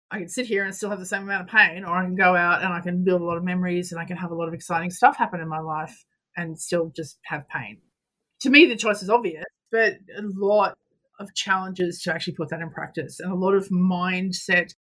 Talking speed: 260 wpm